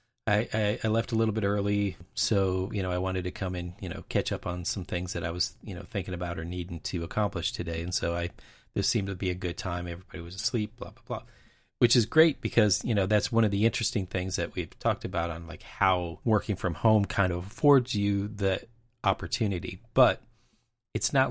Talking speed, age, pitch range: 230 wpm, 30-49, 90-110 Hz